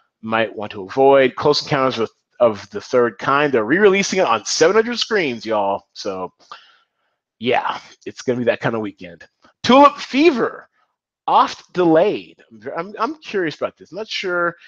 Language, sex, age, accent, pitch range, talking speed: English, male, 30-49, American, 110-145 Hz, 160 wpm